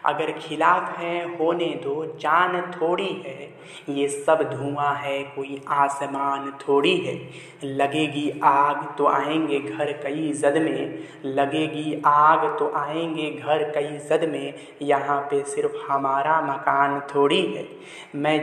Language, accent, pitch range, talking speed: Hindi, native, 140-155 Hz, 130 wpm